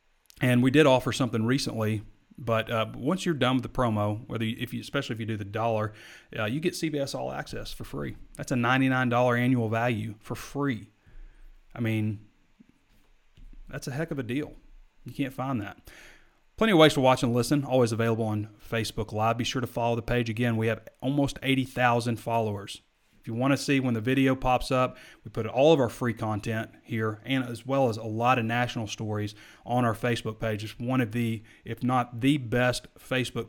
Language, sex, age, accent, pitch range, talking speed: English, male, 30-49, American, 110-130 Hz, 205 wpm